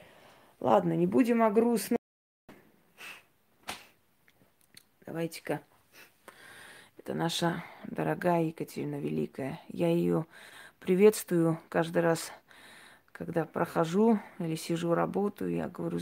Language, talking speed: Russian, 85 wpm